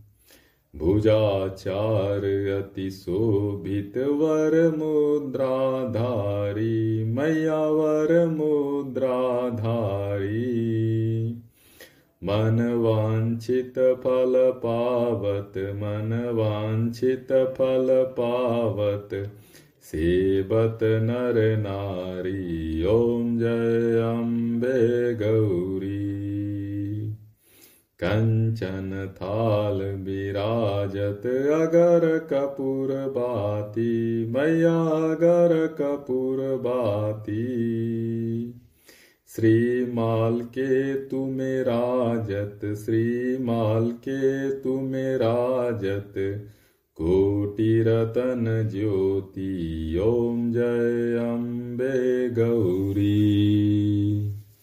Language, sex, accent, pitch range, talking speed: Hindi, male, native, 100-125 Hz, 40 wpm